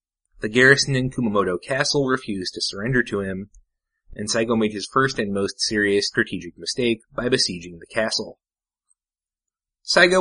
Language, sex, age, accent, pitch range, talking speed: English, male, 30-49, American, 95-130 Hz, 145 wpm